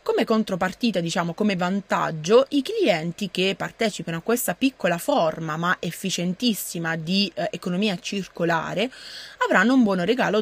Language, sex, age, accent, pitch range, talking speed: Italian, female, 20-39, native, 170-225 Hz, 130 wpm